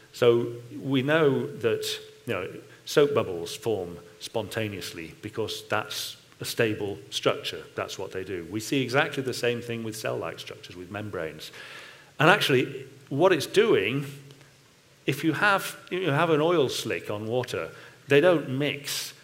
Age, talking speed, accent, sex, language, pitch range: 40-59, 140 wpm, British, male, English, 115-145 Hz